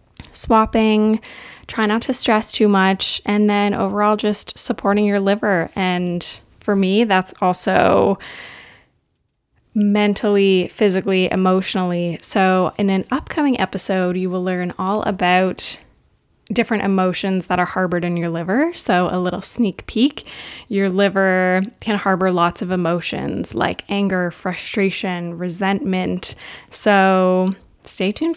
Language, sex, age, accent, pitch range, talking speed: English, female, 20-39, American, 185-210 Hz, 125 wpm